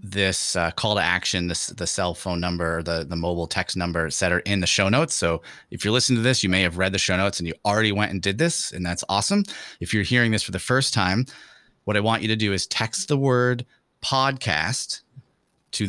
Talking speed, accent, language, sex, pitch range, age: 240 wpm, American, English, male, 95-125 Hz, 30-49